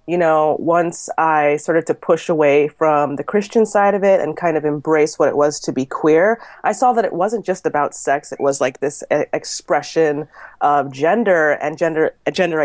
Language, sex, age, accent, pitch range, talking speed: English, female, 30-49, American, 145-180 Hz, 200 wpm